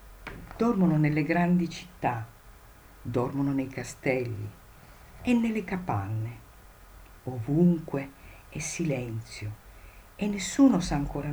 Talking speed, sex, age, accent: 90 wpm, female, 50-69, native